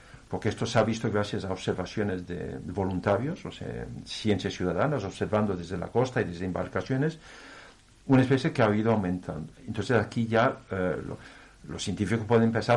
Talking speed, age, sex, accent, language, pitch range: 170 wpm, 50-69, male, Spanish, Spanish, 95-120 Hz